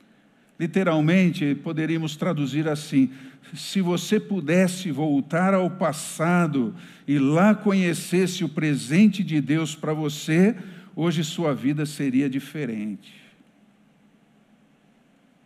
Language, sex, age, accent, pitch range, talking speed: Portuguese, male, 50-69, Brazilian, 145-205 Hz, 95 wpm